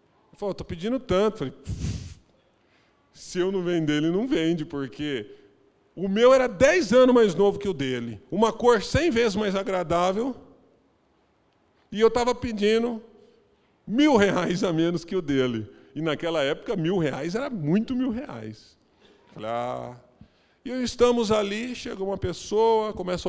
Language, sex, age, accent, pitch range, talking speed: Portuguese, male, 40-59, Brazilian, 145-230 Hz, 145 wpm